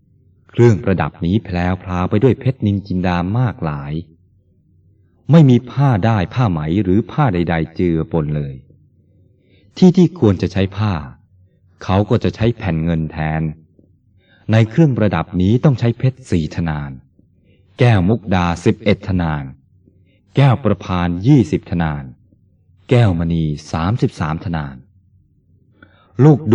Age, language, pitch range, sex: 20-39, Thai, 85-110 Hz, male